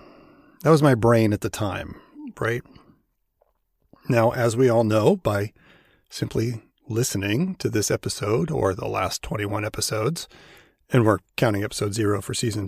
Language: English